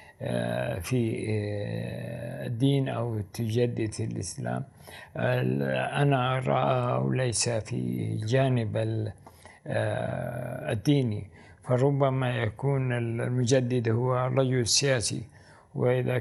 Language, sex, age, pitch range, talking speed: Arabic, male, 60-79, 105-130 Hz, 65 wpm